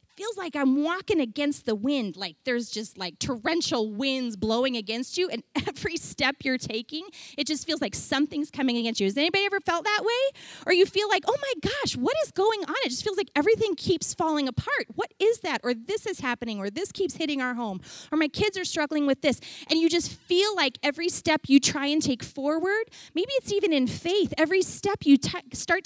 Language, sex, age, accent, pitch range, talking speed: English, female, 30-49, American, 255-375 Hz, 225 wpm